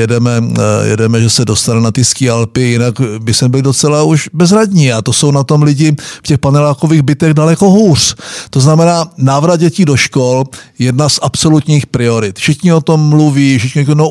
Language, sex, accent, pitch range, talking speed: Czech, male, native, 125-155 Hz, 185 wpm